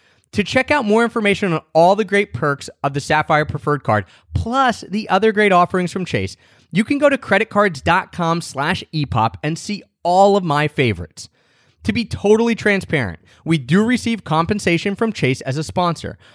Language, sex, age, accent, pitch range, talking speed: English, male, 30-49, American, 115-190 Hz, 175 wpm